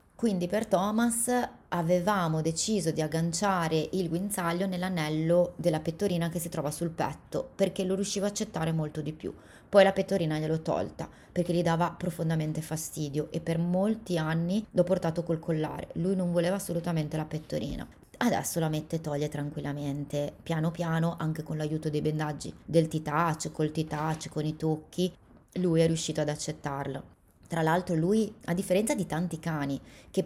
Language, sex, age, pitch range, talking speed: Italian, female, 20-39, 160-200 Hz, 165 wpm